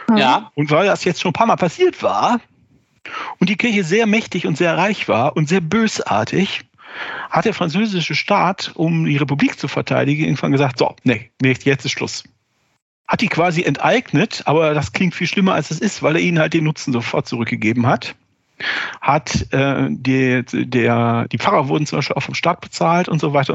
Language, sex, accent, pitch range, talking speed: German, male, German, 135-180 Hz, 195 wpm